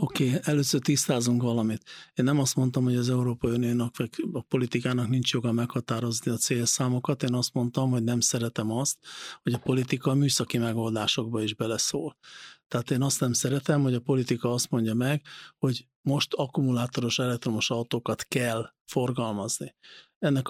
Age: 50-69